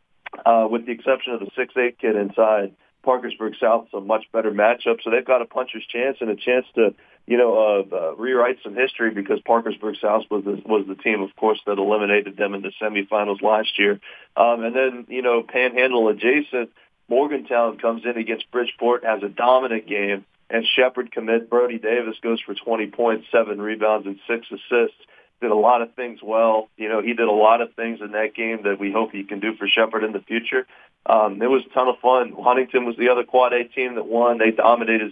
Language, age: English, 40-59